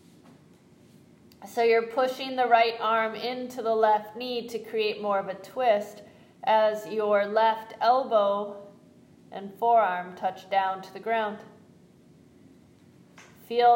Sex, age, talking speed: female, 30-49, 120 wpm